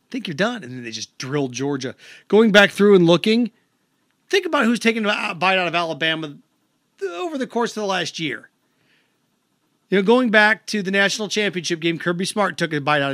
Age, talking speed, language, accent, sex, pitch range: 40-59, 205 wpm, English, American, male, 175-230 Hz